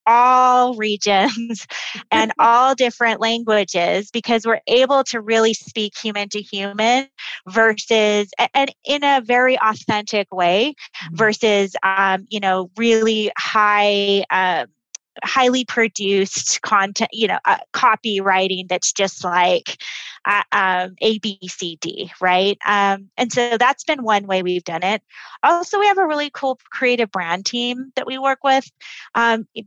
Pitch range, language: 190-230 Hz, English